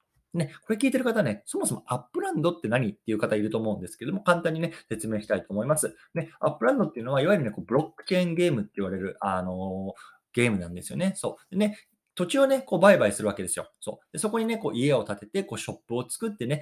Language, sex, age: Japanese, male, 20-39